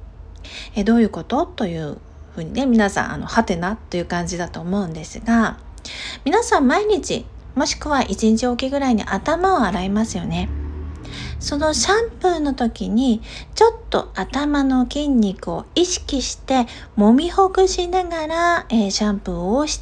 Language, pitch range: Japanese, 200-290 Hz